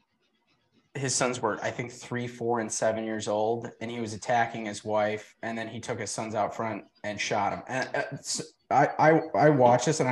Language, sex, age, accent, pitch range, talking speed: English, male, 20-39, American, 110-140 Hz, 220 wpm